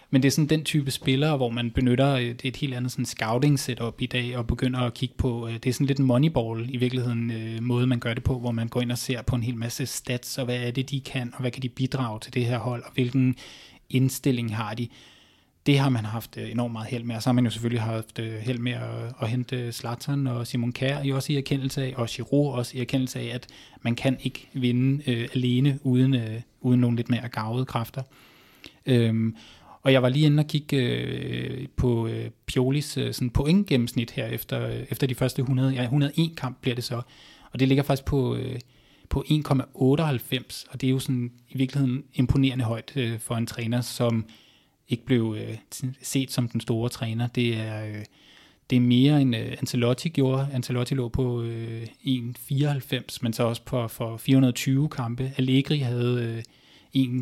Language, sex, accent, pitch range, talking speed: Danish, male, native, 120-135 Hz, 210 wpm